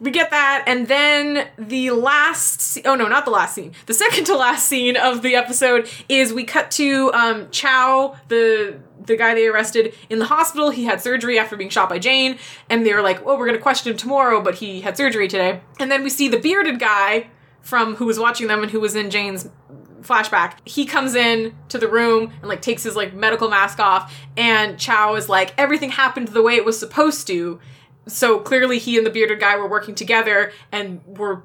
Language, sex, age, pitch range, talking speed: English, female, 20-39, 205-260 Hz, 220 wpm